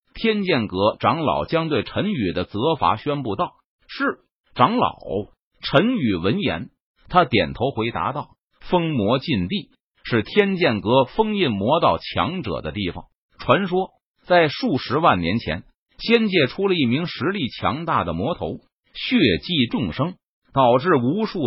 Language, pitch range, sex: Chinese, 130-195 Hz, male